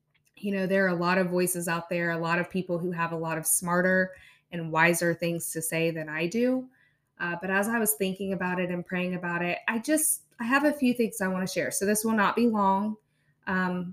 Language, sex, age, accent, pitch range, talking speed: English, female, 20-39, American, 165-195 Hz, 250 wpm